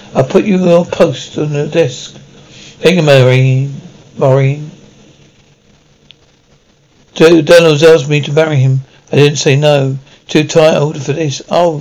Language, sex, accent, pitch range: English, male, British, 145-180 Hz